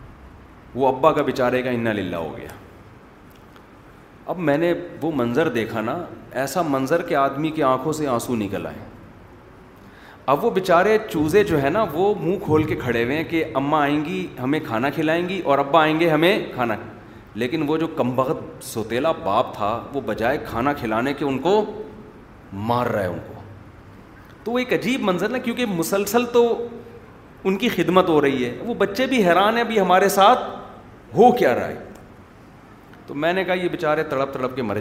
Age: 30-49